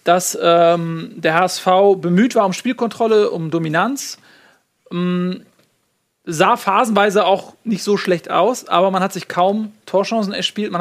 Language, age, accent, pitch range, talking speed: German, 30-49, German, 180-220 Hz, 140 wpm